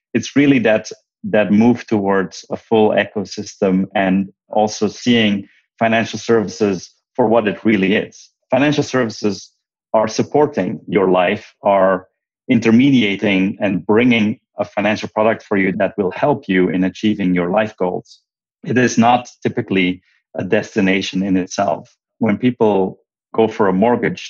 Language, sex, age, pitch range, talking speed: English, male, 30-49, 95-110 Hz, 140 wpm